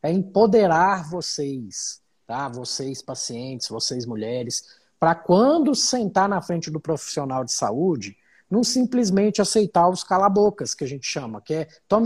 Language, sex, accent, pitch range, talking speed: Portuguese, male, Brazilian, 140-205 Hz, 145 wpm